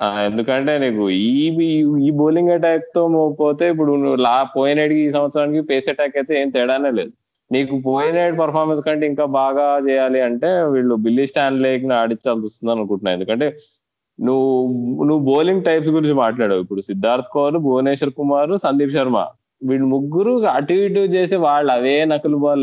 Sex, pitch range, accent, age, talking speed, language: male, 125-155 Hz, native, 20-39, 150 wpm, Telugu